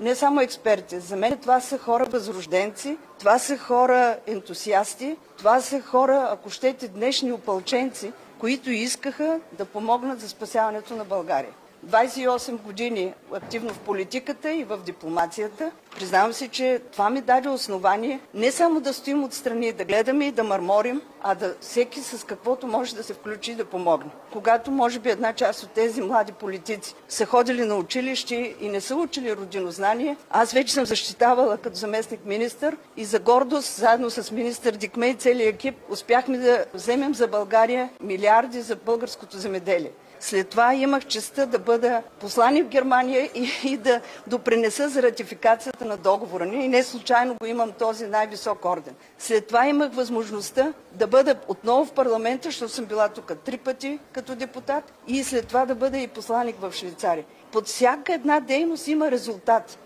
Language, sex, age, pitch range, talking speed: Bulgarian, female, 50-69, 215-260 Hz, 170 wpm